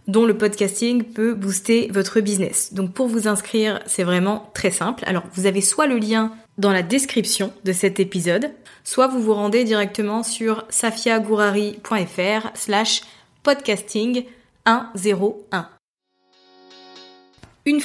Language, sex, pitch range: French, female, 190-225 Hz